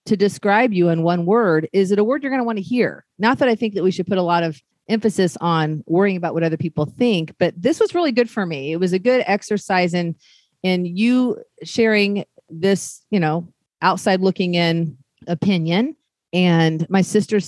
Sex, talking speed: female, 210 wpm